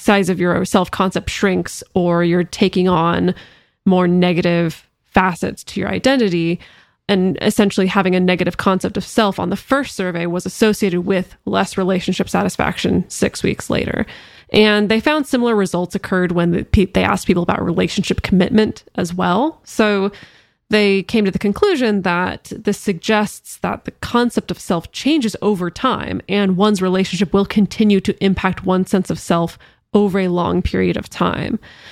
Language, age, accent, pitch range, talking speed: English, 20-39, American, 180-210 Hz, 160 wpm